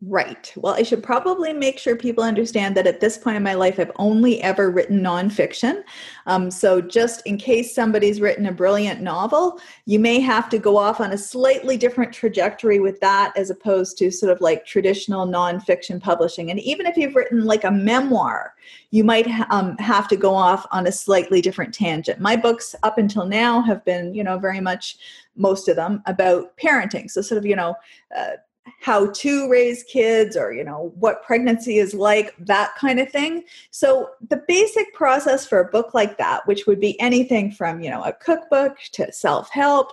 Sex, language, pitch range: female, English, 190-250 Hz